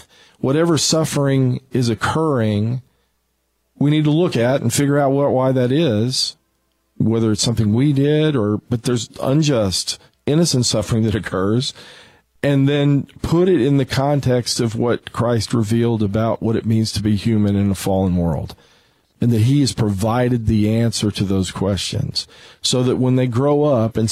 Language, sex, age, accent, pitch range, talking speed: English, male, 40-59, American, 100-125 Hz, 165 wpm